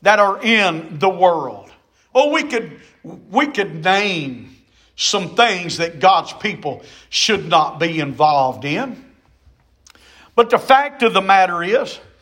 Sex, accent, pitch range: male, American, 220-300 Hz